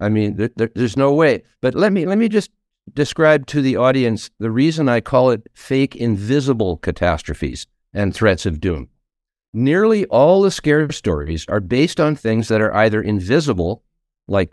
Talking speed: 165 wpm